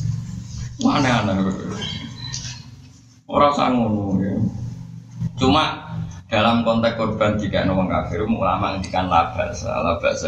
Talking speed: 110 wpm